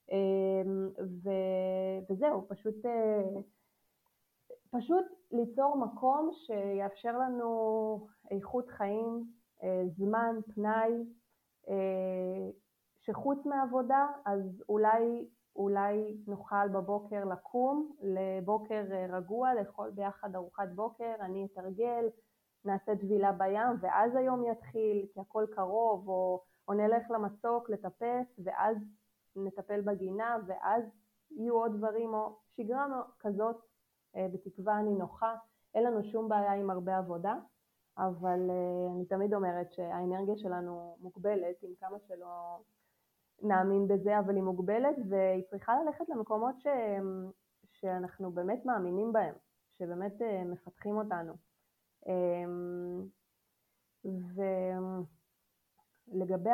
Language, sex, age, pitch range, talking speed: Hebrew, female, 20-39, 190-230 Hz, 95 wpm